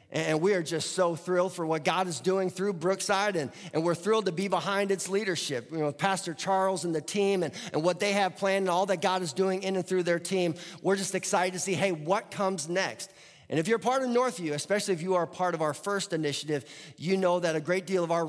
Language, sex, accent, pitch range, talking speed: English, male, American, 160-195 Hz, 255 wpm